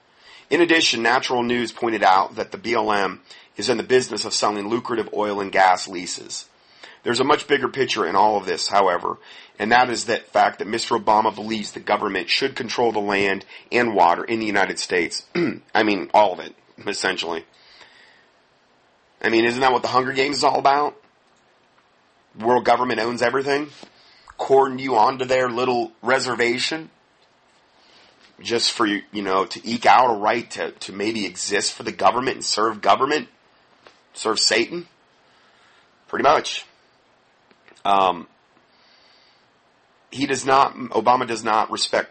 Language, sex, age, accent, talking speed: English, male, 40-59, American, 155 wpm